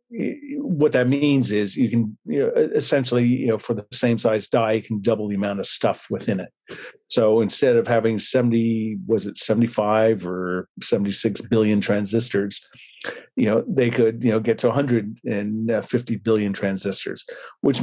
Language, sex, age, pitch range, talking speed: English, male, 50-69, 105-130 Hz, 165 wpm